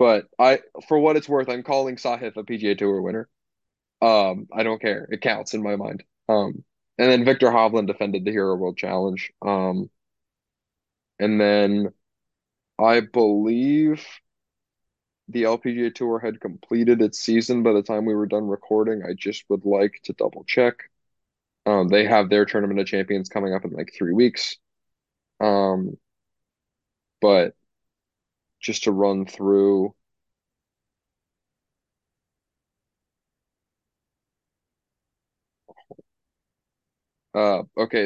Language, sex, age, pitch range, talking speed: English, male, 20-39, 95-110 Hz, 125 wpm